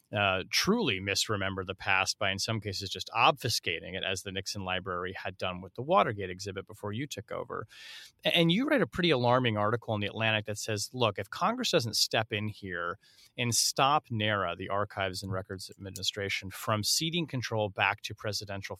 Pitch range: 100-125 Hz